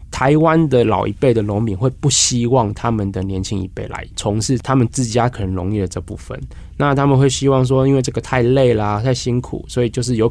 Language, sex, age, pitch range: Chinese, male, 20-39, 100-130 Hz